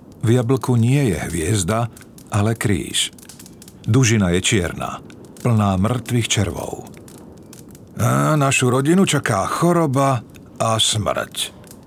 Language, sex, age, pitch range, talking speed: Slovak, male, 50-69, 95-125 Hz, 100 wpm